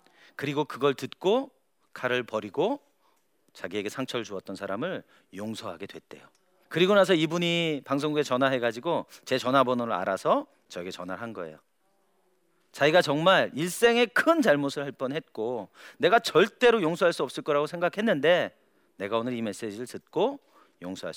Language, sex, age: Korean, male, 40-59